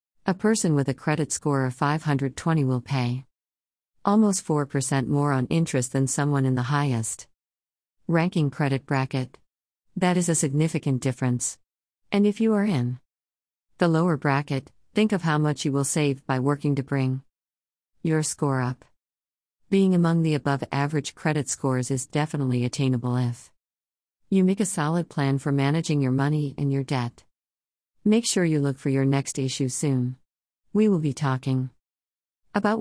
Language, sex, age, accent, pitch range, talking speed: English, female, 50-69, American, 115-155 Hz, 160 wpm